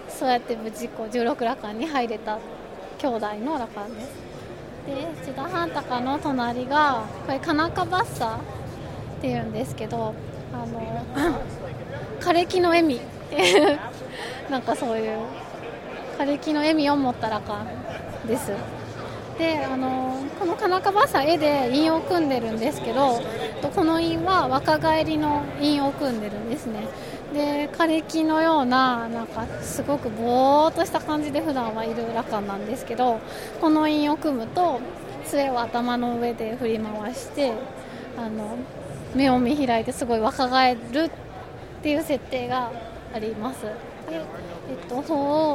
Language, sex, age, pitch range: Japanese, female, 20-39, 240-310 Hz